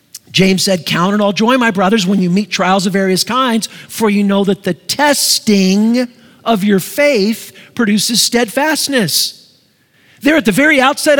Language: English